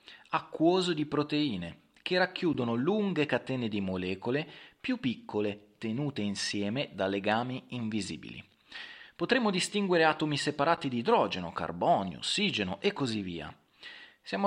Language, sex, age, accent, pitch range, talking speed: Italian, male, 30-49, native, 105-145 Hz, 115 wpm